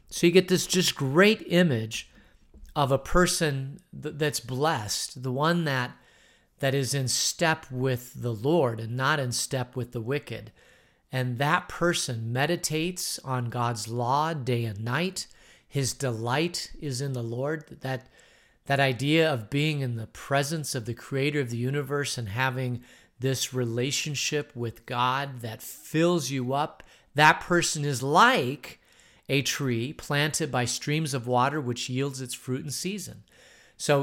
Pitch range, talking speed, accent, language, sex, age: 120-150 Hz, 155 wpm, American, English, male, 40-59